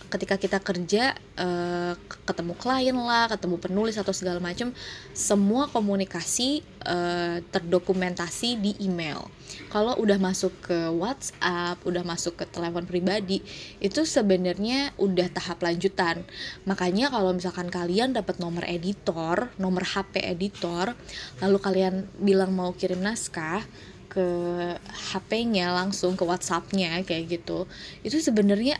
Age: 20-39